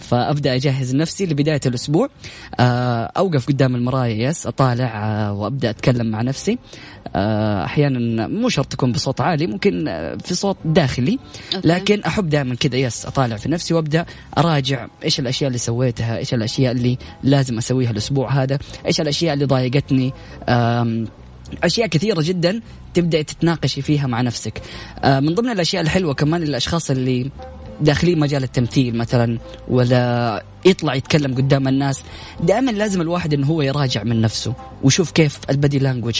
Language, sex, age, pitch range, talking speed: English, female, 10-29, 125-165 Hz, 140 wpm